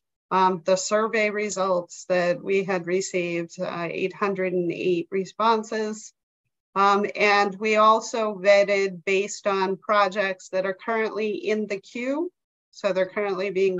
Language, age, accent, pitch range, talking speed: English, 40-59, American, 185-210 Hz, 125 wpm